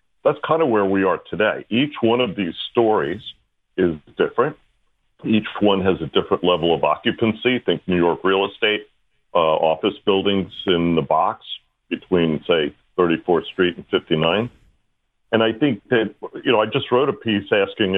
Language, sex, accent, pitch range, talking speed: English, male, American, 90-120 Hz, 170 wpm